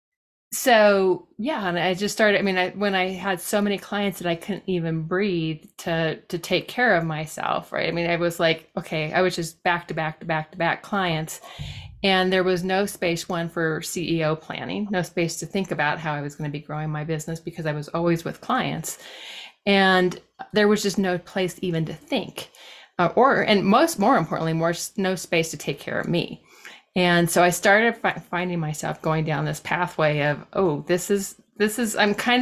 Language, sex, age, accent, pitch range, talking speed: English, female, 30-49, American, 160-190 Hz, 210 wpm